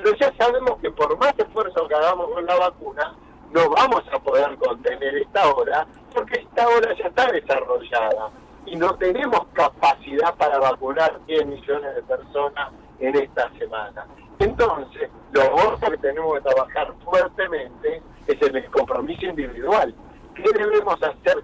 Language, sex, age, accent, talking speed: Spanish, male, 50-69, Argentinian, 150 wpm